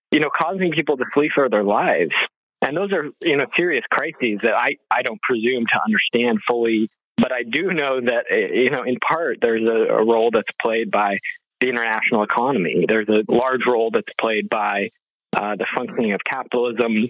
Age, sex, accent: 20-39, male, American